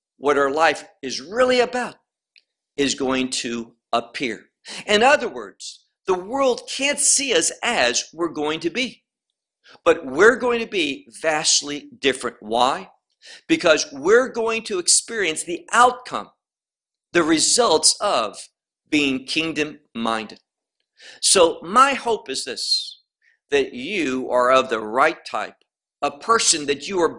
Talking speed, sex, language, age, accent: 130 wpm, male, English, 50-69, American